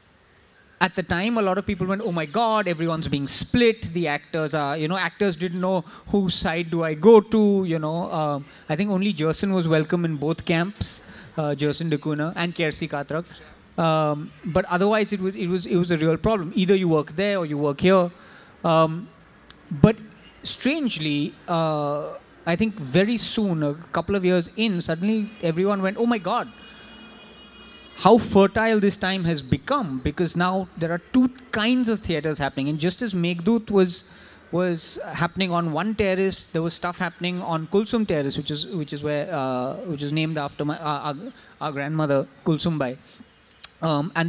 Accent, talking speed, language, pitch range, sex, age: Indian, 185 wpm, English, 160-200 Hz, male, 20-39